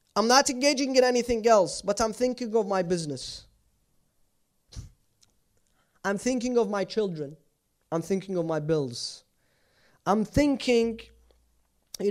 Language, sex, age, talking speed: English, male, 20-39, 125 wpm